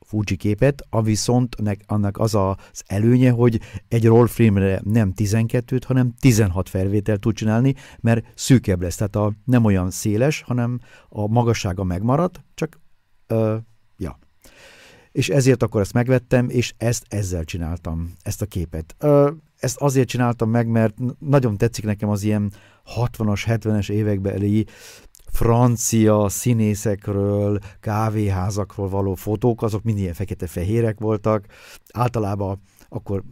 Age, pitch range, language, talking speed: 50-69, 100-120 Hz, Hungarian, 135 wpm